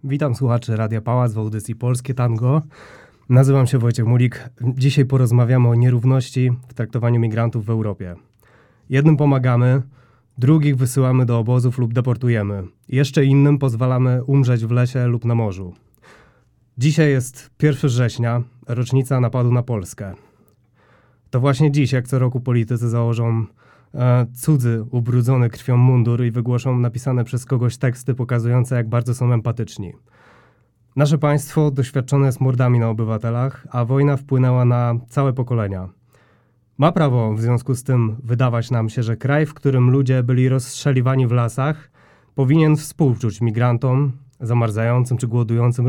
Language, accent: Polish, native